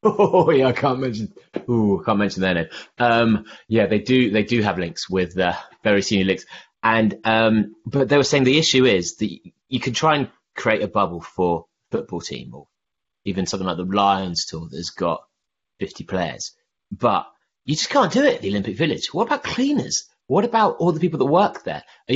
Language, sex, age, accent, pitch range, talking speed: English, male, 30-49, British, 105-145 Hz, 210 wpm